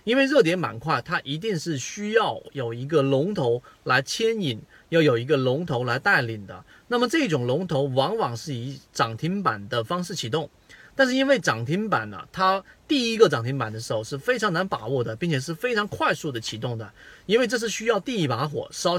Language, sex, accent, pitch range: Chinese, male, native, 135-210 Hz